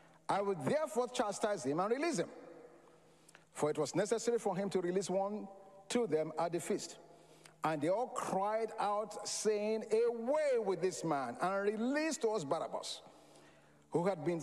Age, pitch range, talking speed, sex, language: 50-69, 170-245 Hz, 165 wpm, male, English